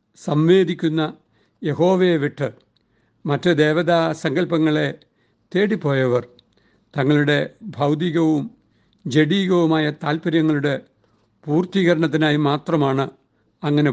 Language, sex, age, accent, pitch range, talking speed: Malayalam, male, 60-79, native, 140-170 Hz, 60 wpm